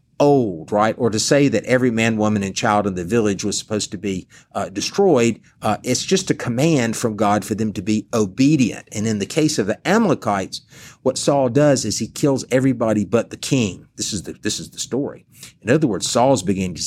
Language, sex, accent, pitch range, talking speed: English, male, American, 105-135 Hz, 215 wpm